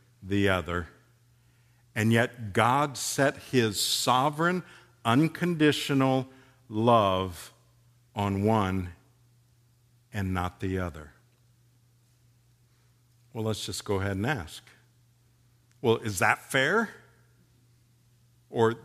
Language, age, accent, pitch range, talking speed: English, 50-69, American, 110-120 Hz, 90 wpm